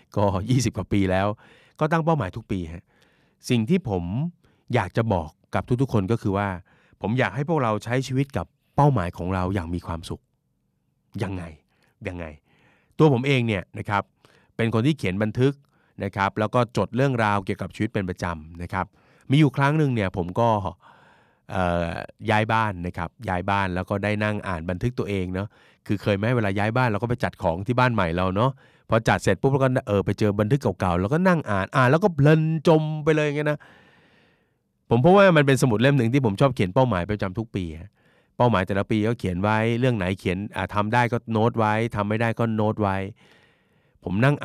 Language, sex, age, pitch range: Thai, male, 30-49, 95-125 Hz